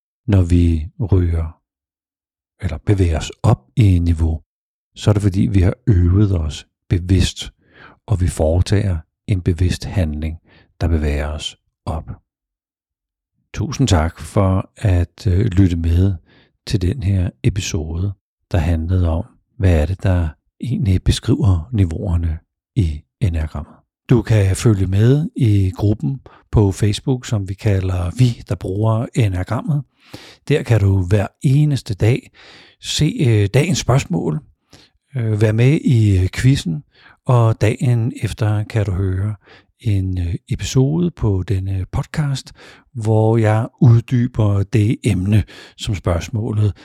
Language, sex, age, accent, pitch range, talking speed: Danish, male, 60-79, native, 90-115 Hz, 125 wpm